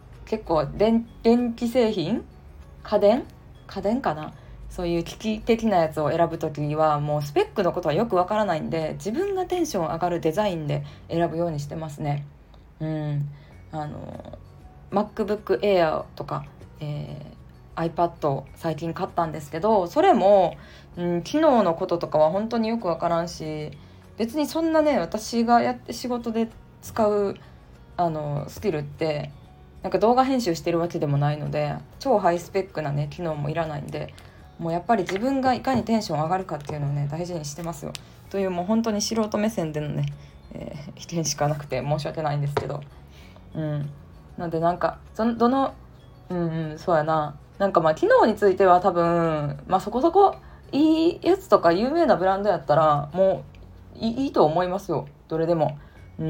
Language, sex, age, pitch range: Japanese, female, 20-39, 150-215 Hz